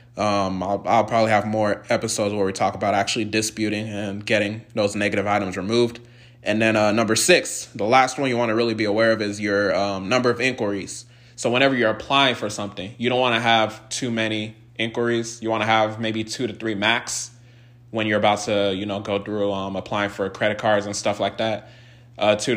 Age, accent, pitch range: 20-39, American, 105-120 Hz